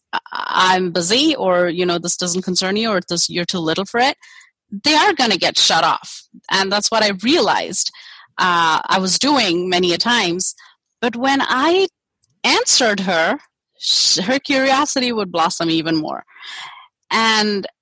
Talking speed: 155 wpm